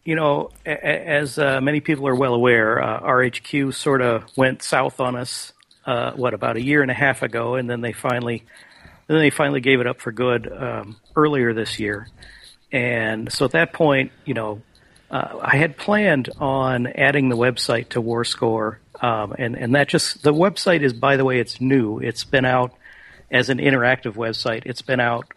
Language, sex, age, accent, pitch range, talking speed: English, male, 50-69, American, 120-145 Hz, 195 wpm